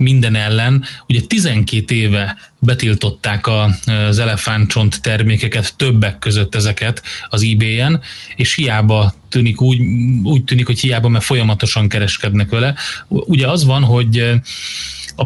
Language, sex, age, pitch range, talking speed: Hungarian, male, 30-49, 110-125 Hz, 120 wpm